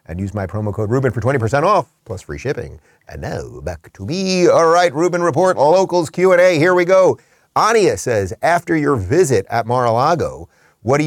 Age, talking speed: 30-49, 190 wpm